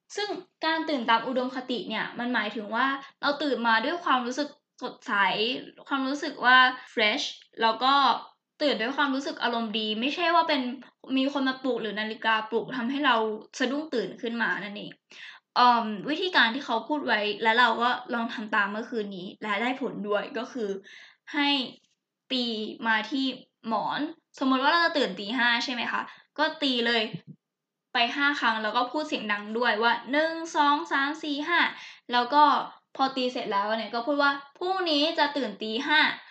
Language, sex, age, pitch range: Thai, female, 10-29, 220-285 Hz